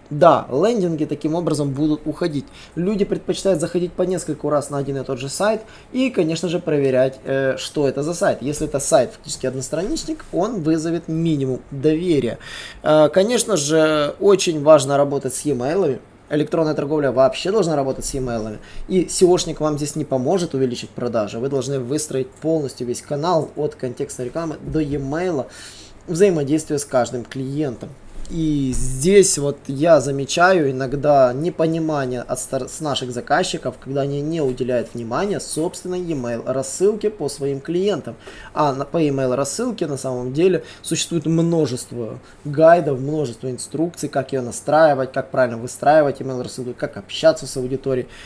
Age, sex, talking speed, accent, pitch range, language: 20-39, male, 150 wpm, native, 130-165 Hz, Russian